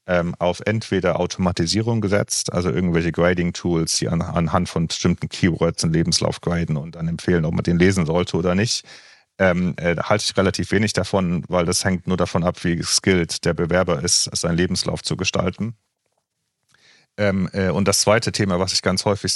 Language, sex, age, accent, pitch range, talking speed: German, male, 40-59, German, 85-100 Hz, 165 wpm